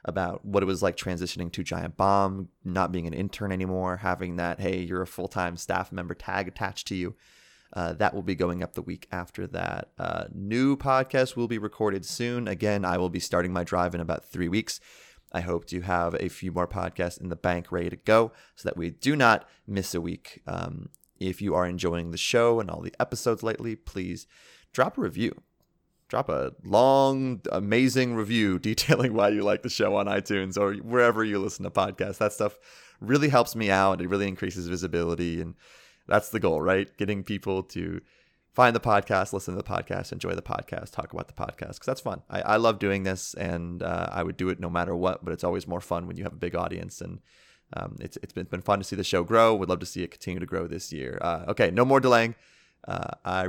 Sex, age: male, 30-49